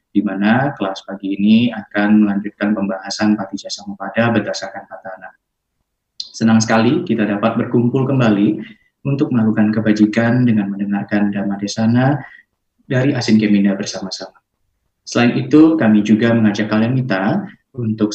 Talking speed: 120 wpm